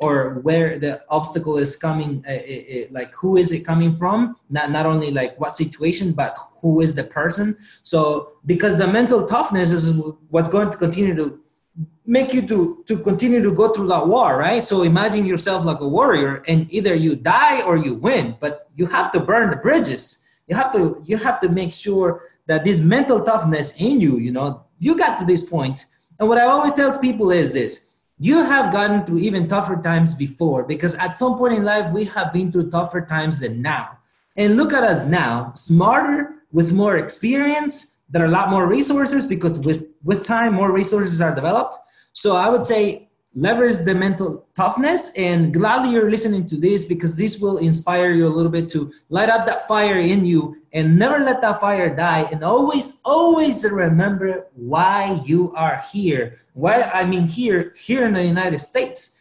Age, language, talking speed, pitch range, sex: 20-39, English, 190 wpm, 160-220 Hz, male